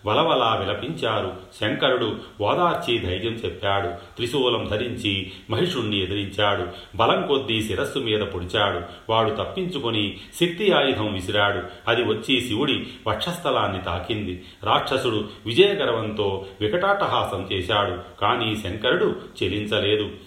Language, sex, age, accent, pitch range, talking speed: Telugu, male, 40-59, native, 95-115 Hz, 95 wpm